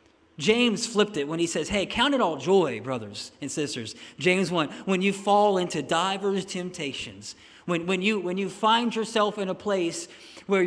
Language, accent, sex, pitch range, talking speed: English, American, male, 155-195 Hz, 185 wpm